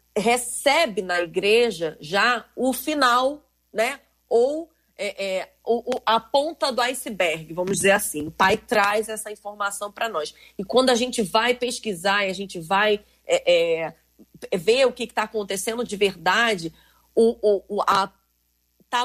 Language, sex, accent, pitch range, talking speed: Portuguese, female, Brazilian, 200-260 Hz, 140 wpm